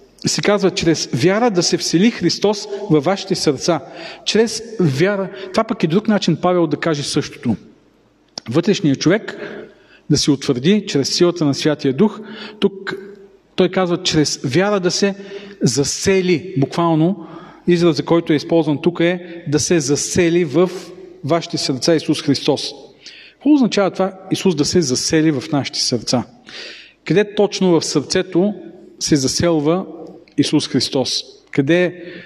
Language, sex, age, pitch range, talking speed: Bulgarian, male, 40-59, 155-195 Hz, 140 wpm